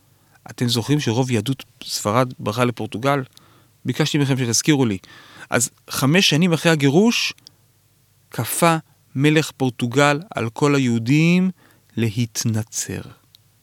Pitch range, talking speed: 120-140 Hz, 100 wpm